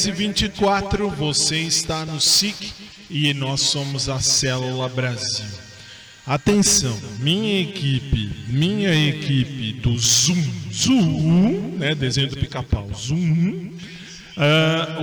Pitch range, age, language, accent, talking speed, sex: 125-155 Hz, 20-39, Portuguese, Brazilian, 105 wpm, male